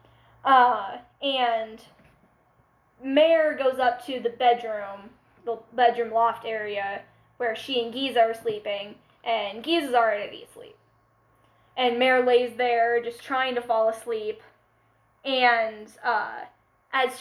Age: 10-29